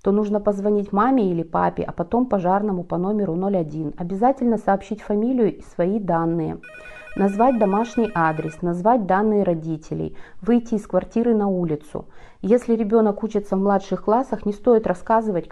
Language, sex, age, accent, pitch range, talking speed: Russian, female, 30-49, native, 180-220 Hz, 145 wpm